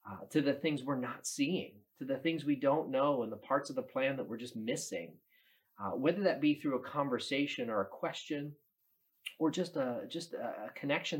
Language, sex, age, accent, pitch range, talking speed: English, male, 40-59, American, 110-170 Hz, 210 wpm